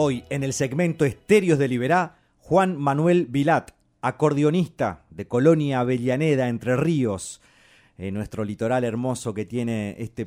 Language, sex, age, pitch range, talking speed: Spanish, male, 30-49, 110-135 Hz, 135 wpm